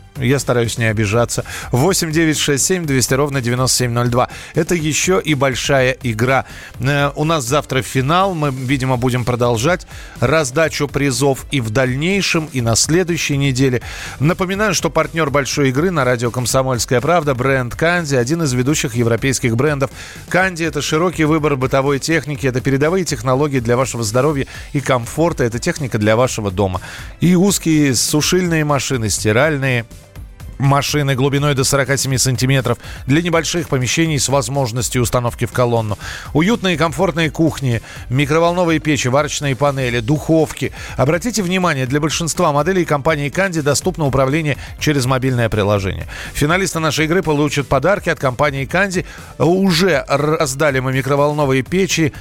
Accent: native